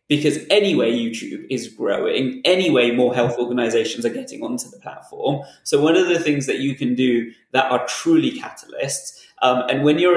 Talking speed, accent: 185 wpm, British